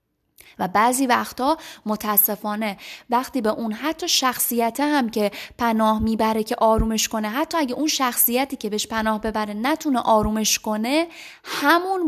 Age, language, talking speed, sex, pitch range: 20-39, Persian, 140 wpm, female, 215-275 Hz